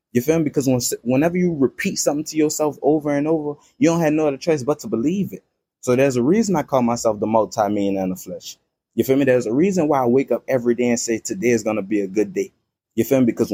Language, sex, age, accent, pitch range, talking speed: English, male, 20-39, American, 120-160 Hz, 275 wpm